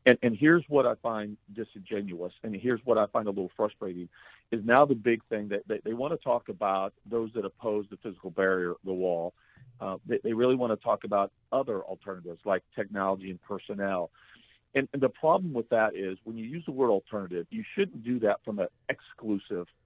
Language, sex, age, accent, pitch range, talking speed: English, male, 50-69, American, 105-140 Hz, 205 wpm